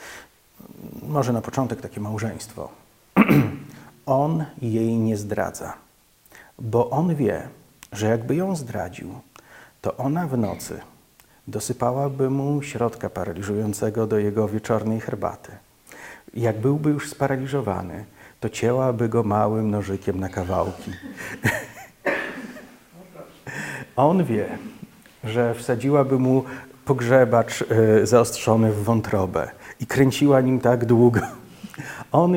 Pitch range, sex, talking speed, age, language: 110-135 Hz, male, 100 wpm, 50-69, Polish